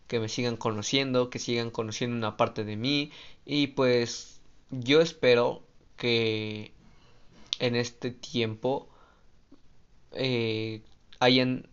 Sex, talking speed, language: male, 105 wpm, Spanish